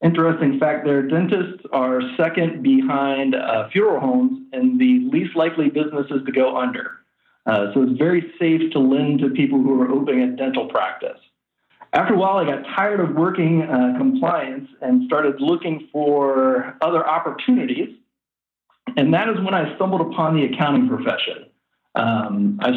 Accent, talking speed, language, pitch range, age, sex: American, 160 wpm, English, 135-190 Hz, 40-59, male